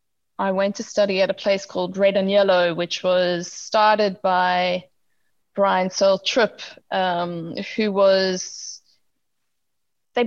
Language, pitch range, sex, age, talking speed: English, 185-210 Hz, female, 20-39, 130 wpm